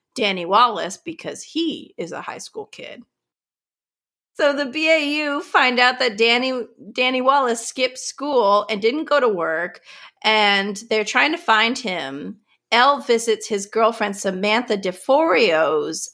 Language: English